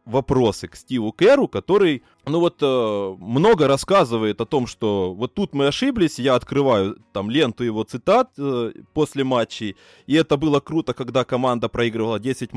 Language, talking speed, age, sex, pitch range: Russian, 160 wpm, 20-39, male, 120-165 Hz